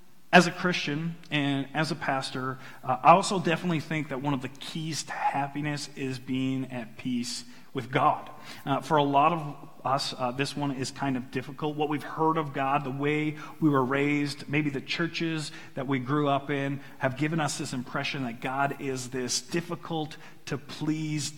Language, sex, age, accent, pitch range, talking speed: English, male, 40-59, American, 130-155 Hz, 185 wpm